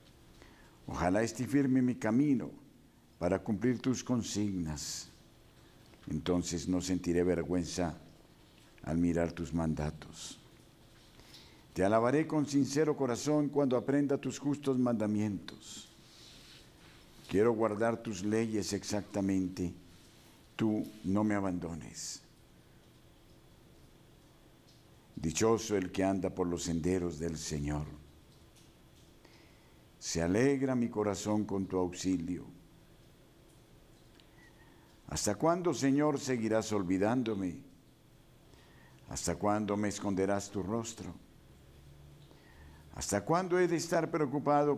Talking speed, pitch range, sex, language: 90 wpm, 90-125 Hz, male, Spanish